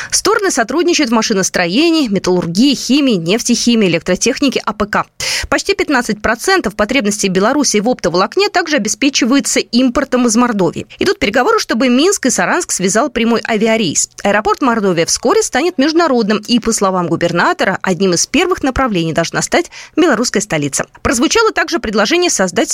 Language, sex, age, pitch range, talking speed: Russian, female, 20-39, 195-305 Hz, 130 wpm